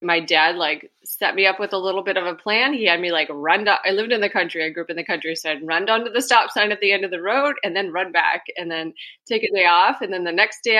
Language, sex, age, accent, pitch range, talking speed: English, female, 20-39, American, 160-205 Hz, 330 wpm